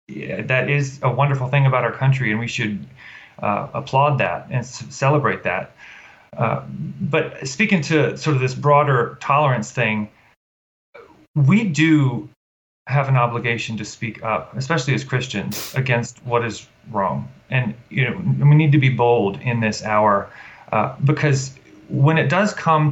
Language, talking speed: English, 160 wpm